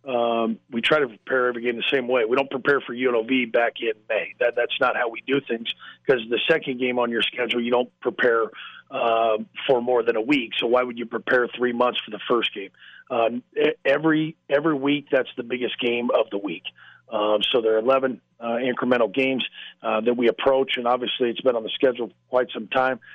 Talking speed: 220 wpm